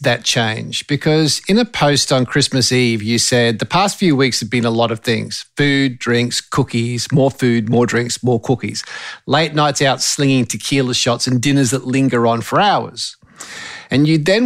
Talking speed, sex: 190 wpm, male